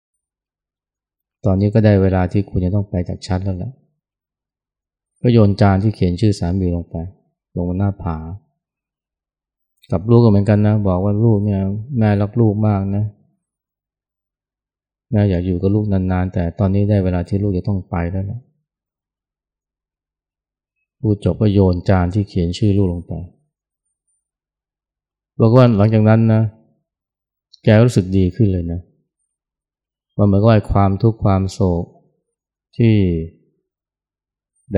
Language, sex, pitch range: Thai, male, 90-110 Hz